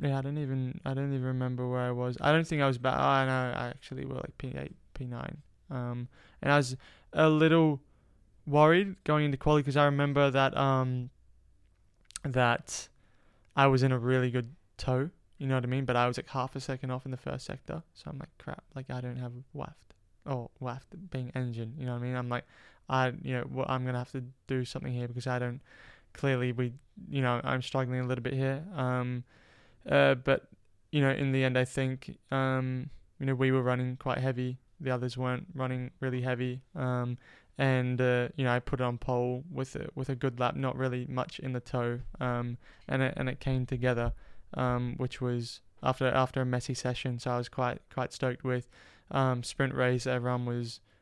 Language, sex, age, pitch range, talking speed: English, male, 20-39, 125-135 Hz, 220 wpm